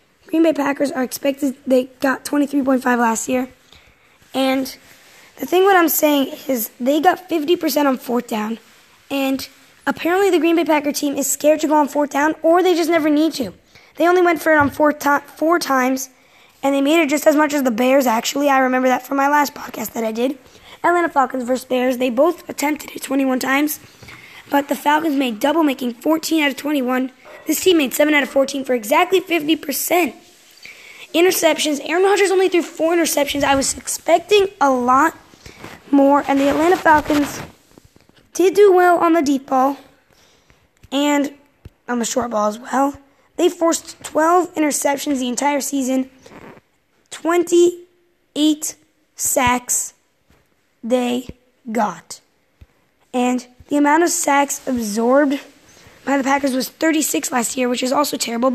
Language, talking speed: English, 165 wpm